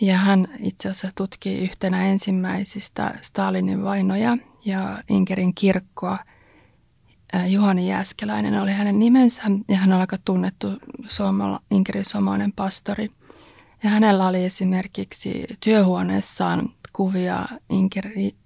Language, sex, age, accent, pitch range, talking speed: Finnish, female, 30-49, native, 185-210 Hz, 105 wpm